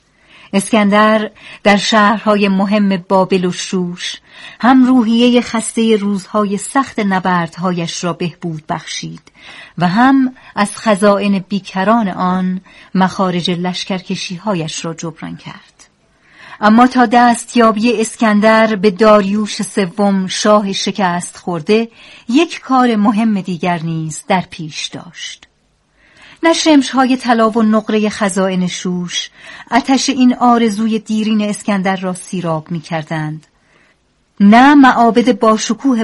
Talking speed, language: 105 wpm, Persian